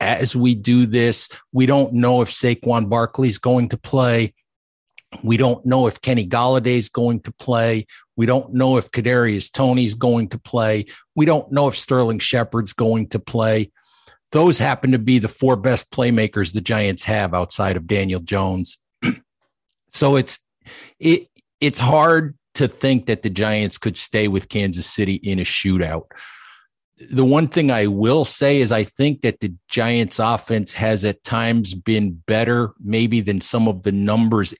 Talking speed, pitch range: 170 wpm, 105-125 Hz